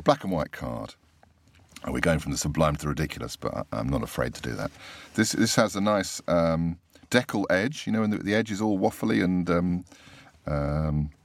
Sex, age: male, 40-59